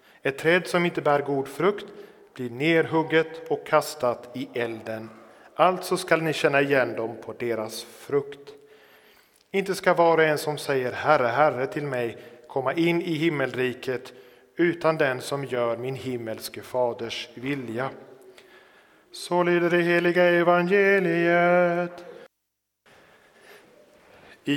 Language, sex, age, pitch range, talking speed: Swedish, male, 40-59, 125-165 Hz, 120 wpm